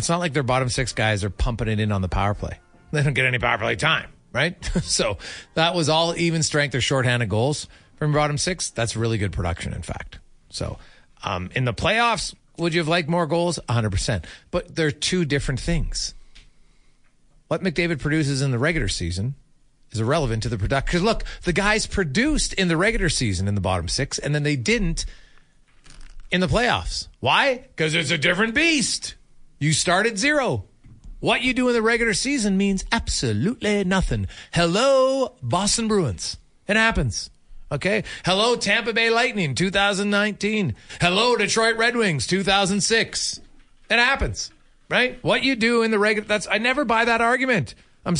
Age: 40-59